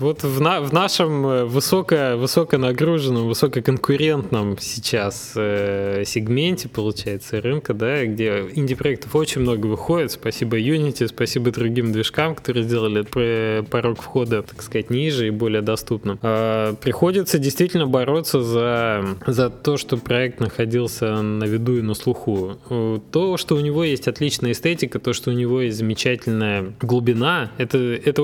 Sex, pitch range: male, 110-135 Hz